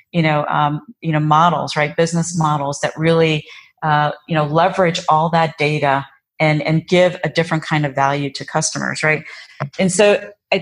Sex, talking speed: female, 180 wpm